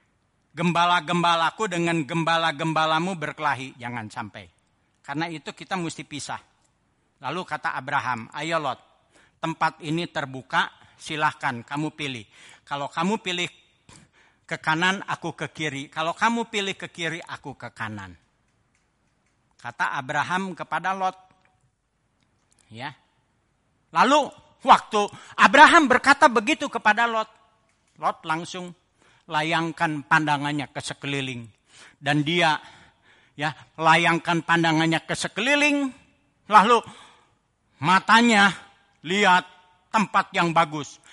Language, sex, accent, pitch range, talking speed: Indonesian, male, native, 150-235 Hz, 100 wpm